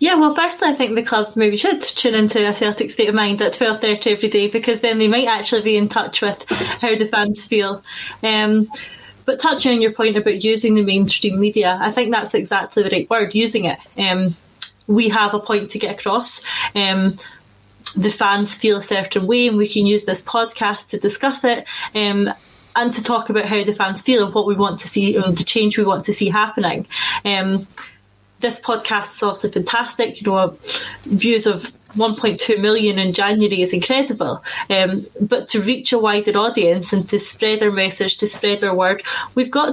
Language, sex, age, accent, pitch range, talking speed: English, female, 20-39, British, 205-230 Hz, 200 wpm